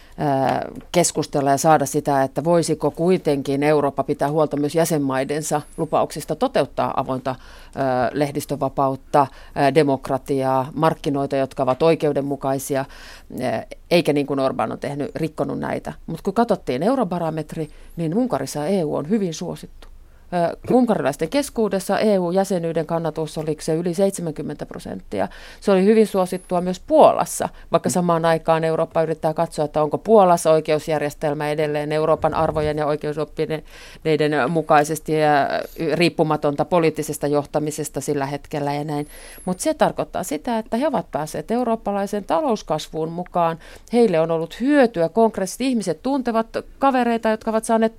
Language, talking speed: Finnish, 125 wpm